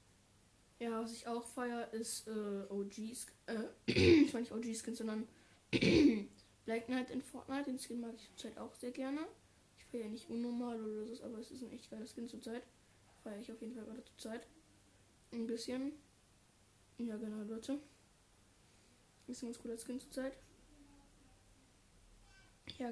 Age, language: 10-29, German